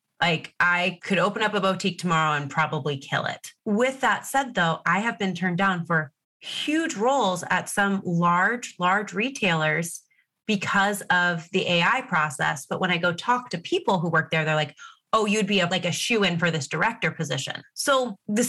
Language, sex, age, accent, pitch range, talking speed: English, female, 30-49, American, 170-235 Hz, 190 wpm